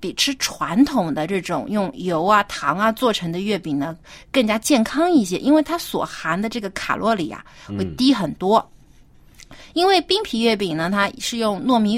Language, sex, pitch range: Chinese, female, 185-270 Hz